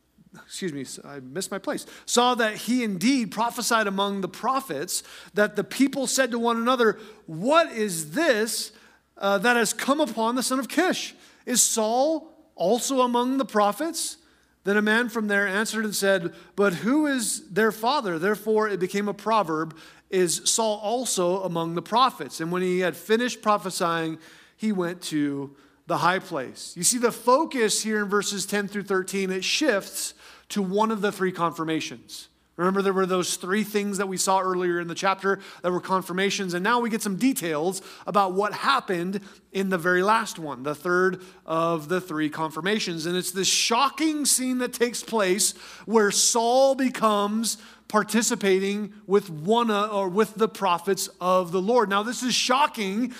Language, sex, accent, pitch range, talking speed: English, male, American, 185-240 Hz, 175 wpm